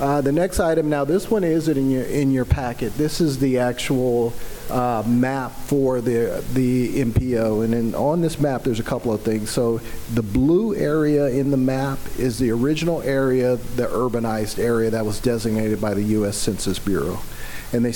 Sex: male